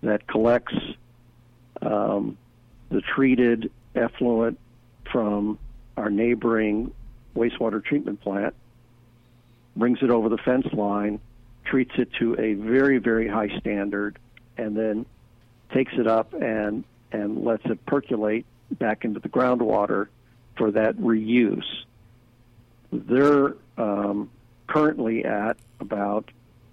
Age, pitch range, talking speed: 50-69, 110-120 Hz, 110 wpm